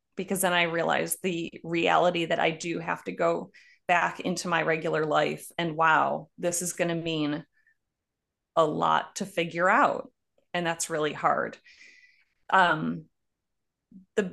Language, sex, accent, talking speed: English, female, American, 145 wpm